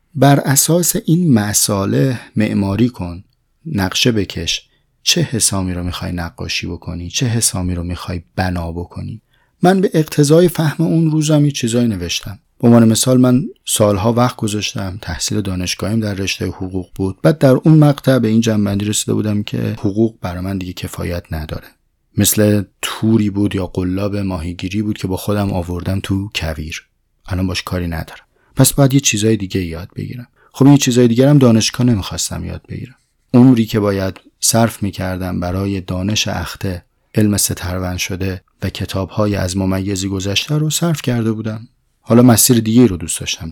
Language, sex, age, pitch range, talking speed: Persian, male, 30-49, 95-125 Hz, 155 wpm